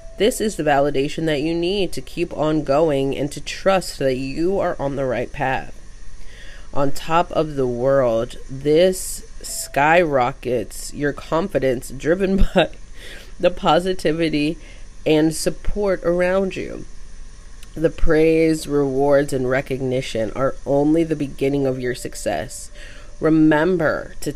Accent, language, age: American, English, 30-49